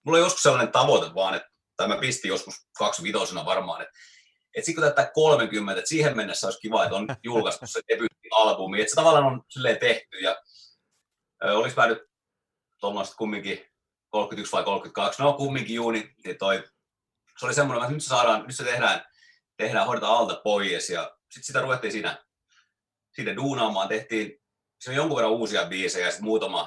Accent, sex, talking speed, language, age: Finnish, male, 170 wpm, English, 30-49